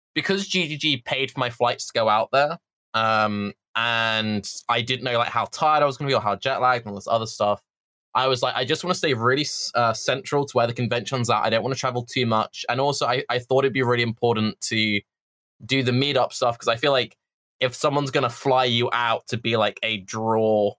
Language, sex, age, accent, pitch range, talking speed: English, male, 20-39, British, 110-130 Hz, 245 wpm